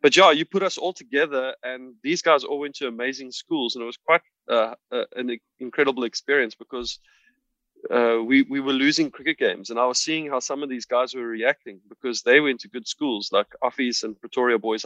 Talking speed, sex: 215 wpm, male